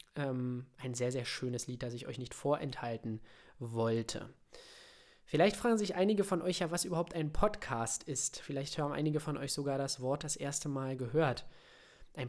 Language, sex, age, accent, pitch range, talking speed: German, male, 20-39, German, 130-155 Hz, 175 wpm